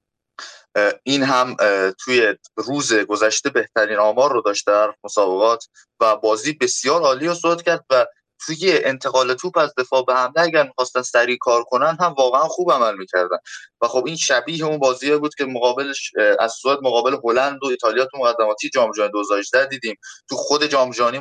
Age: 20-39